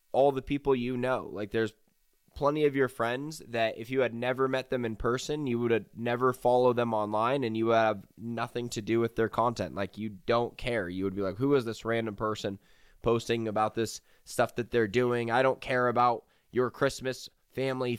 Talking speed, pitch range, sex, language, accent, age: 210 wpm, 115-135 Hz, male, English, American, 20-39